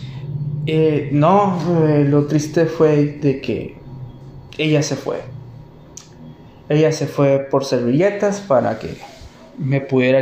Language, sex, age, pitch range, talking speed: Spanish, male, 20-39, 135-160 Hz, 115 wpm